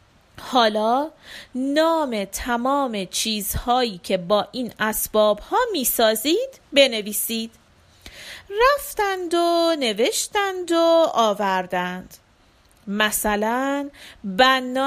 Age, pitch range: 40-59, 215-280 Hz